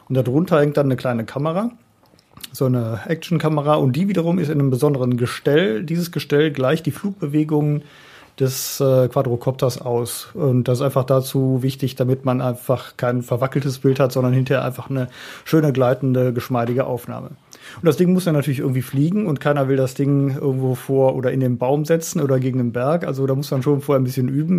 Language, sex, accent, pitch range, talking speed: German, male, German, 130-150 Hz, 200 wpm